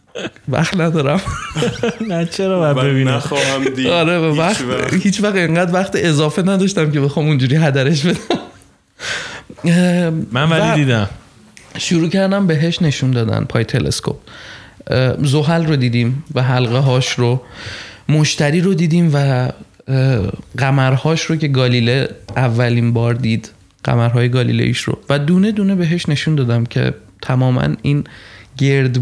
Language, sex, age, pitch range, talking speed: Persian, male, 20-39, 125-160 Hz, 120 wpm